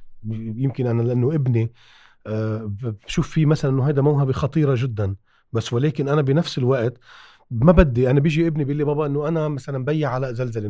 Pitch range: 115-150 Hz